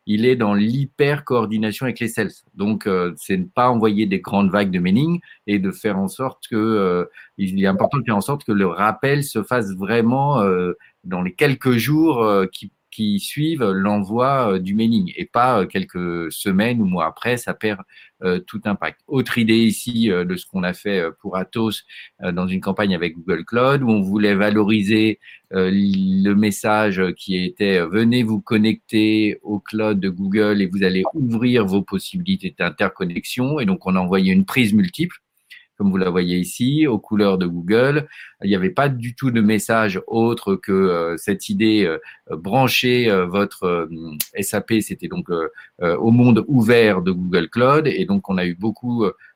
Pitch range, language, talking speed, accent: 95-125 Hz, French, 185 wpm, French